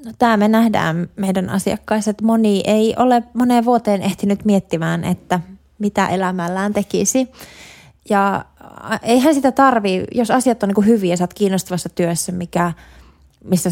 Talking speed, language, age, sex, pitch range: 145 wpm, Finnish, 20-39, female, 175-220 Hz